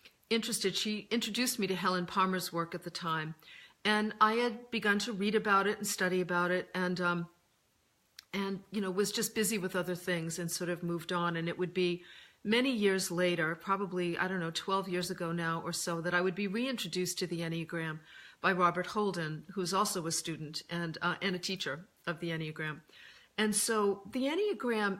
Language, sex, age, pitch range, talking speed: English, female, 50-69, 175-215 Hz, 200 wpm